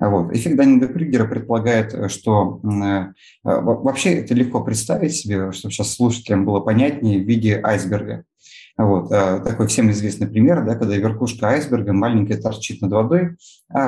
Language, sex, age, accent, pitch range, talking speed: Russian, male, 30-49, native, 105-130 Hz, 145 wpm